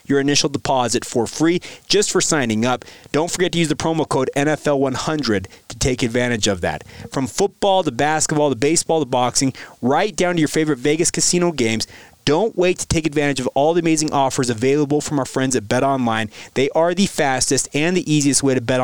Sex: male